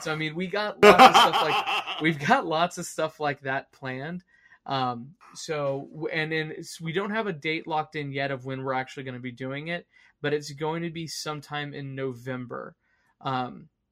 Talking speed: 185 wpm